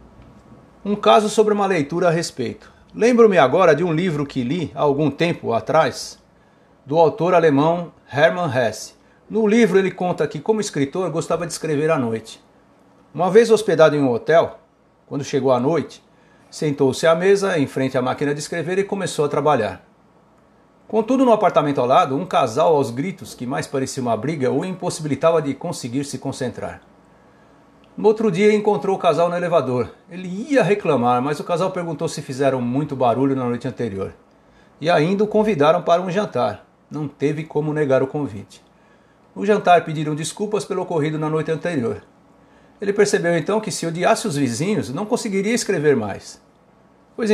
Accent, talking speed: Brazilian, 170 wpm